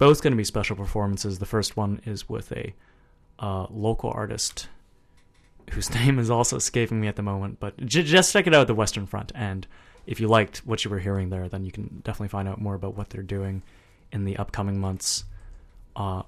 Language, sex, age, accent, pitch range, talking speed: English, male, 30-49, American, 100-125 Hz, 215 wpm